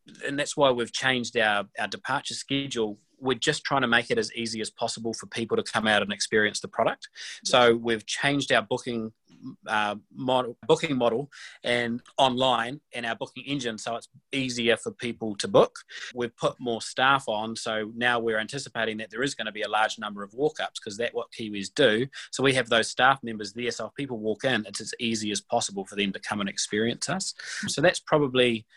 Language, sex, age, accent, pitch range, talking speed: English, male, 20-39, Australian, 115-145 Hz, 210 wpm